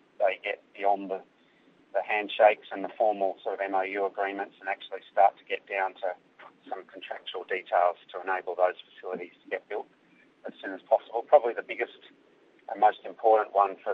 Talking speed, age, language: 180 wpm, 30-49, English